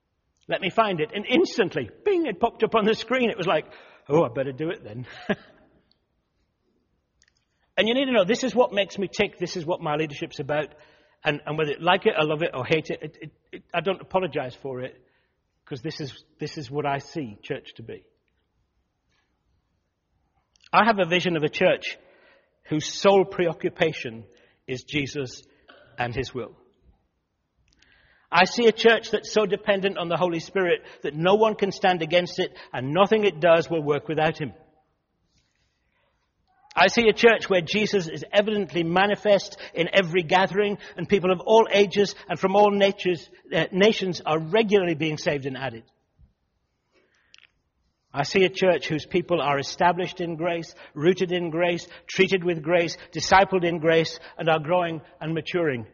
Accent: British